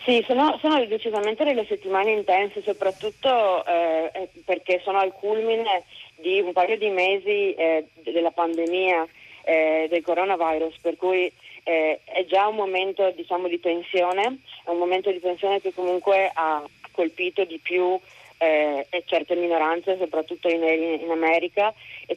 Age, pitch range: 30-49, 160-190 Hz